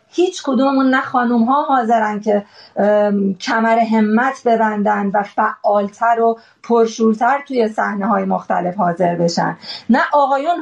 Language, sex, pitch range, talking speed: Persian, female, 205-245 Hz, 125 wpm